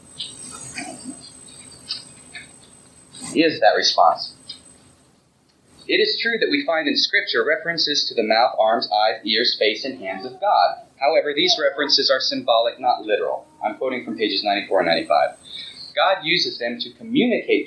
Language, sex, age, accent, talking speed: English, male, 30-49, American, 145 wpm